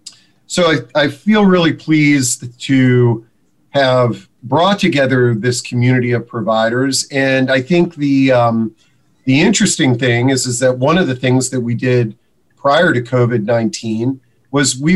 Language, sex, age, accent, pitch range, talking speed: English, male, 40-59, American, 125-150 Hz, 150 wpm